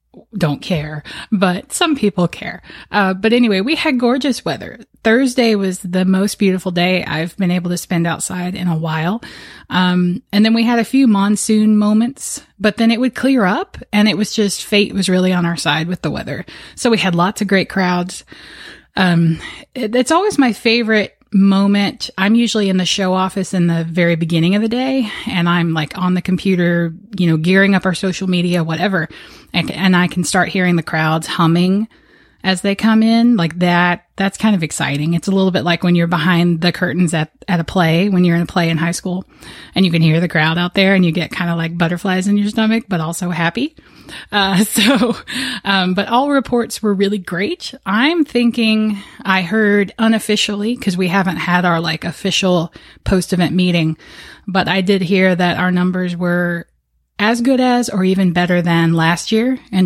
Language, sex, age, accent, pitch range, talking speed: English, female, 20-39, American, 175-215 Hz, 200 wpm